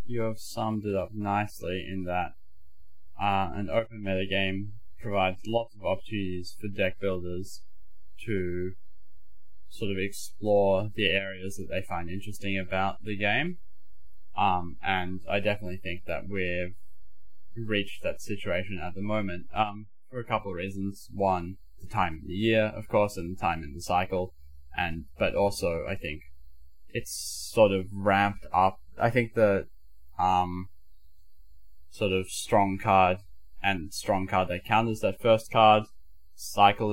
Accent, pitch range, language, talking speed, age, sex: Australian, 75-105 Hz, English, 150 wpm, 10-29, male